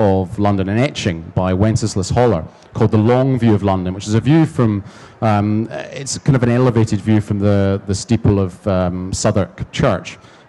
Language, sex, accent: English, male, British